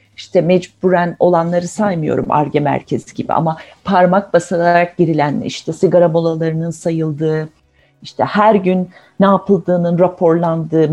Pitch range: 170-220 Hz